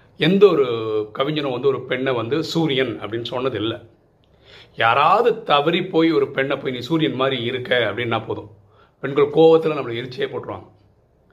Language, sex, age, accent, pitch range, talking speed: Tamil, male, 40-59, native, 120-165 Hz, 150 wpm